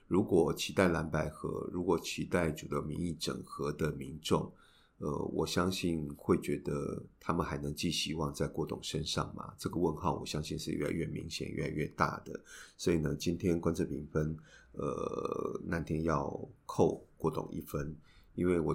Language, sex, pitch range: Chinese, male, 75-85 Hz